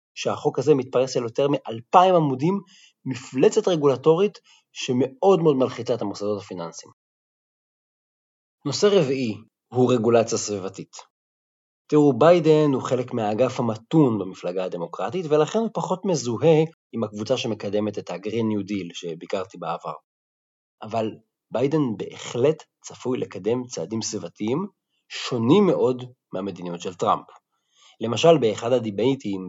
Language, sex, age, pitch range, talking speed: Hebrew, male, 30-49, 105-155 Hz, 115 wpm